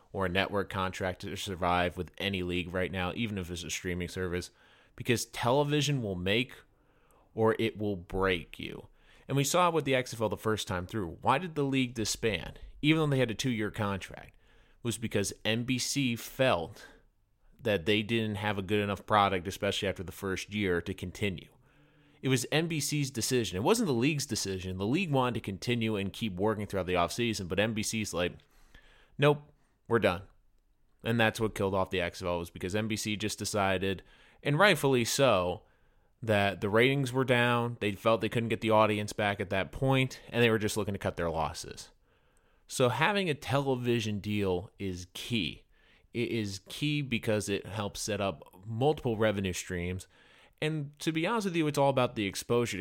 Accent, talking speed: American, 185 wpm